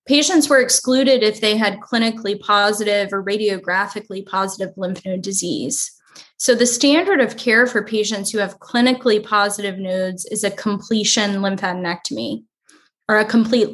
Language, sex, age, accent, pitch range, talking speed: English, female, 10-29, American, 195-230 Hz, 145 wpm